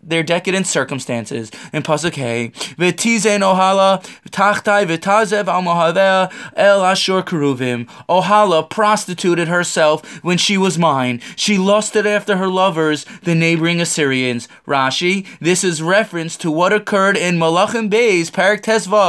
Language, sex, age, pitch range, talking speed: English, male, 20-39, 165-210 Hz, 100 wpm